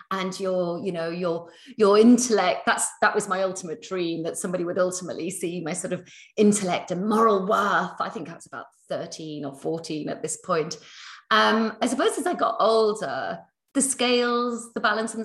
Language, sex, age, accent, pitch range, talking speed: English, female, 30-49, British, 165-225 Hz, 190 wpm